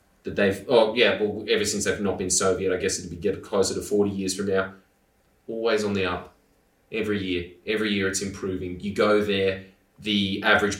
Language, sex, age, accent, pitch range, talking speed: English, male, 20-39, Australian, 90-100 Hz, 200 wpm